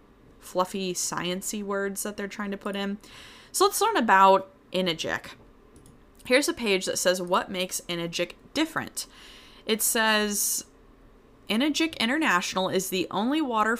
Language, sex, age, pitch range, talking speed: English, female, 20-39, 175-225 Hz, 135 wpm